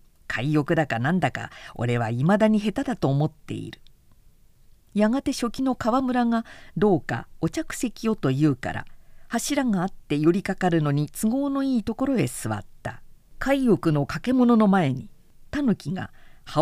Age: 50-69